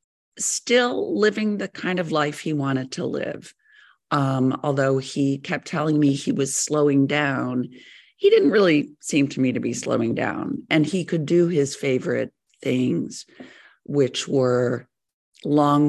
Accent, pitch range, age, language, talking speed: American, 130-155 Hz, 50-69, English, 150 wpm